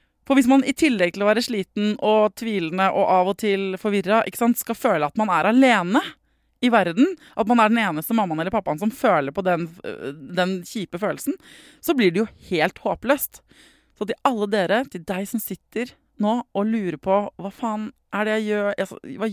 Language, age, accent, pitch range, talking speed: English, 20-39, Swedish, 180-235 Hz, 210 wpm